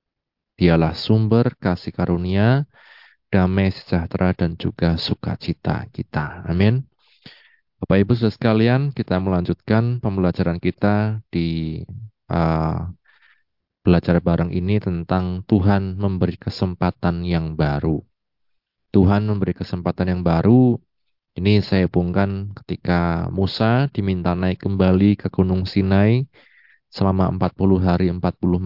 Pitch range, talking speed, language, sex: 85-105 Hz, 105 wpm, Indonesian, male